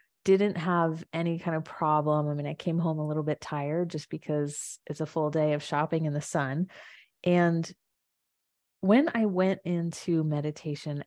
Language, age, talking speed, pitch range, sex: English, 30-49, 175 wpm, 145-170 Hz, female